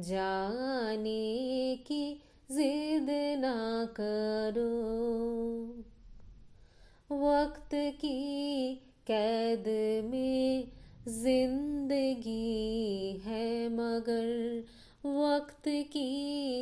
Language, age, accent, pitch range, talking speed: Hindi, 20-39, native, 230-330 Hz, 50 wpm